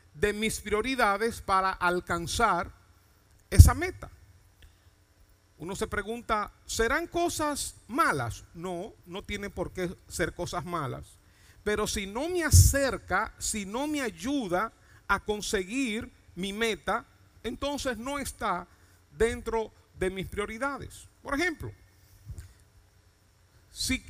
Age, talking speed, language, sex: 50-69, 110 wpm, Spanish, male